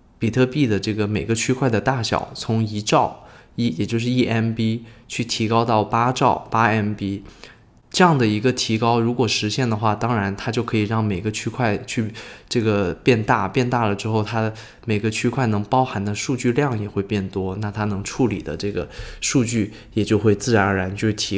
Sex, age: male, 20-39